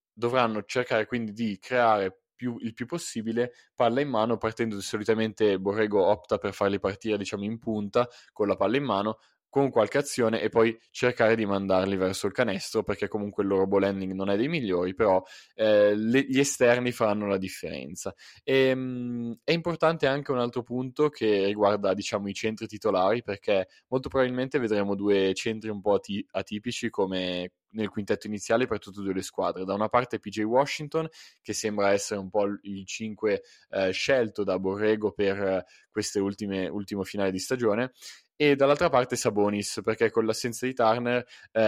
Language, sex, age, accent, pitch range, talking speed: Italian, male, 20-39, native, 100-120 Hz, 170 wpm